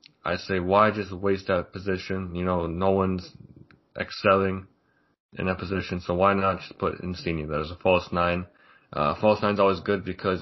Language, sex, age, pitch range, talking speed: English, male, 20-39, 90-95 Hz, 180 wpm